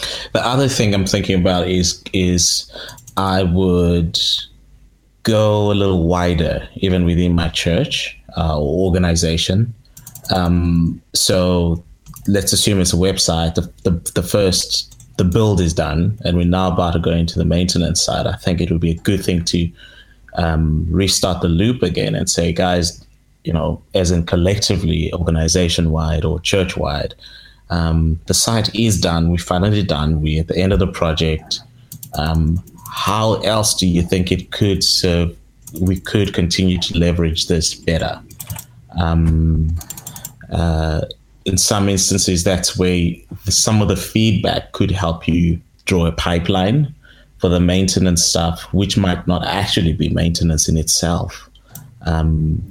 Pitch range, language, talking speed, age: 85-100 Hz, English, 150 wpm, 20-39